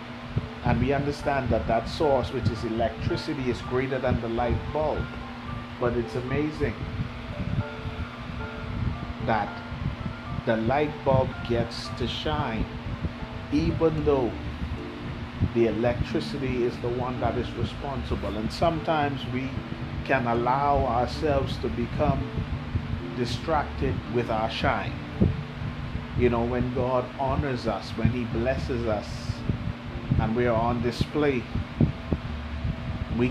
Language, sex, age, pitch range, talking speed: English, male, 30-49, 115-130 Hz, 115 wpm